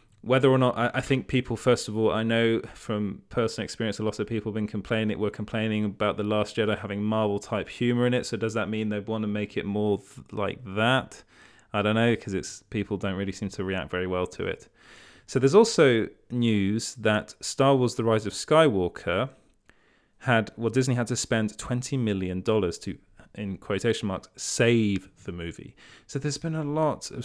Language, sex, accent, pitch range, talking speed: English, male, British, 100-120 Hz, 200 wpm